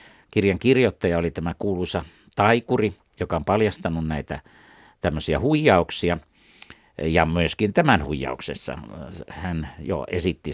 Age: 60-79